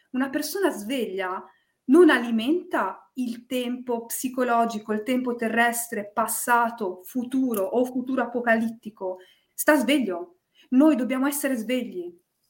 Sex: female